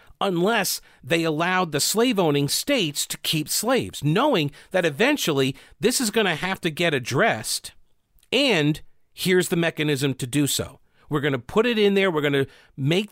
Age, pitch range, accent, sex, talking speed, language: 40-59, 145-195 Hz, American, male, 180 wpm, English